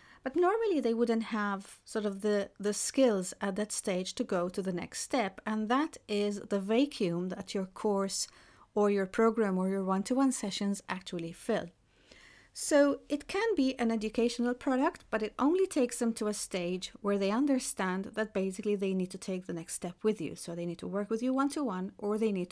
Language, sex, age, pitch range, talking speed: English, female, 40-59, 185-230 Hz, 215 wpm